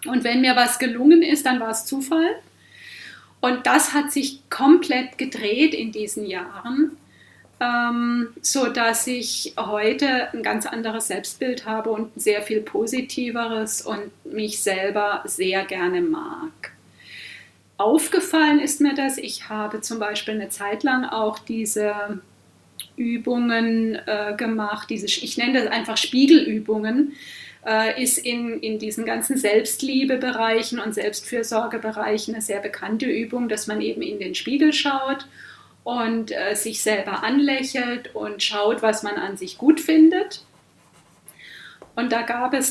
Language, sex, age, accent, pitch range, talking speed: German, female, 30-49, German, 215-270 Hz, 130 wpm